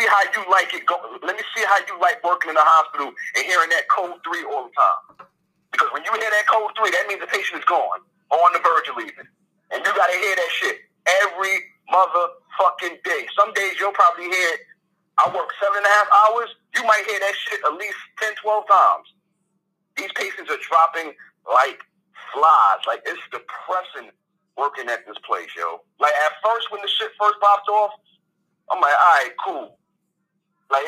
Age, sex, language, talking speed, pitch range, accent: 30-49, male, English, 190 wpm, 175-215 Hz, American